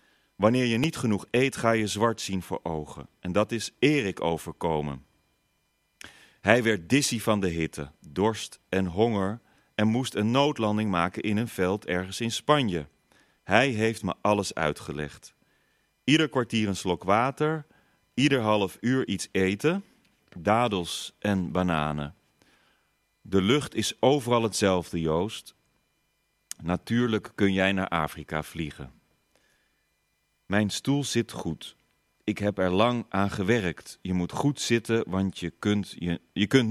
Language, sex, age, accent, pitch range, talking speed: Dutch, male, 40-59, Dutch, 90-120 Hz, 135 wpm